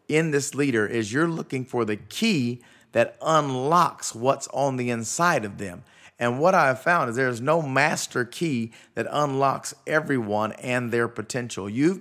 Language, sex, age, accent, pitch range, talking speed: English, male, 40-59, American, 110-145 Hz, 175 wpm